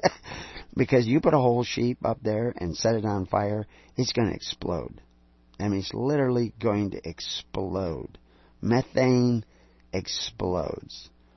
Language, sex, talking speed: English, male, 135 wpm